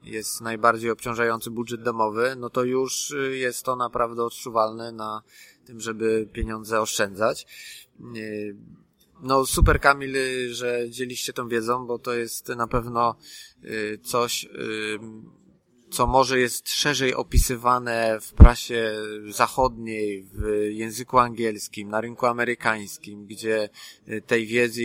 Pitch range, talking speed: 110-125 Hz, 115 wpm